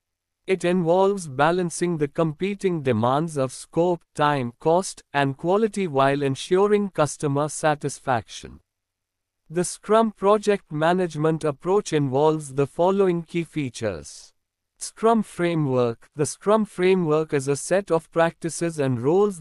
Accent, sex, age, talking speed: Indian, male, 50-69, 120 wpm